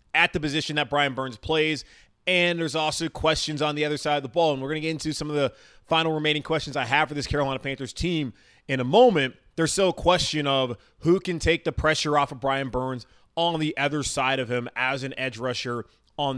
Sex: male